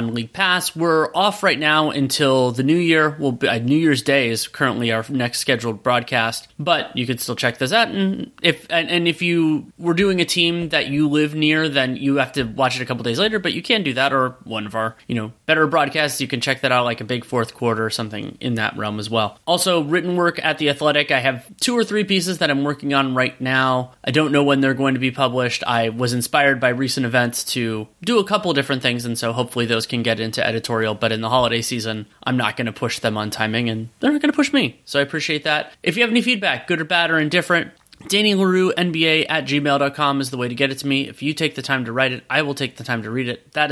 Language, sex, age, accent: English, male, 30-49, American